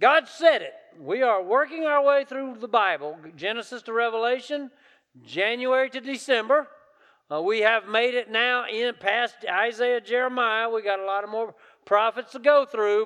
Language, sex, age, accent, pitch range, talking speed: English, male, 40-59, American, 200-255 Hz, 170 wpm